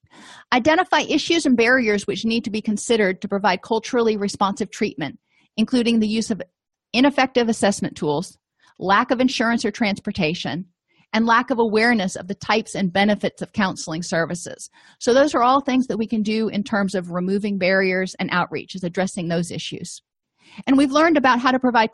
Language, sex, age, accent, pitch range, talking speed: English, female, 40-59, American, 180-235 Hz, 180 wpm